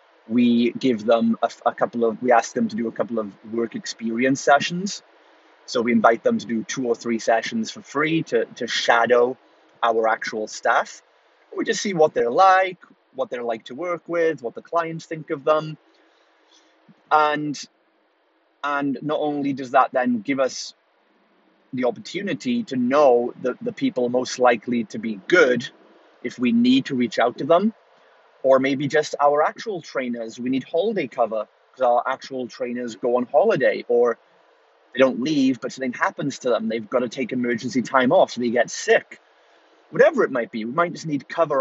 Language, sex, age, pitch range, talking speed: English, male, 30-49, 120-160 Hz, 185 wpm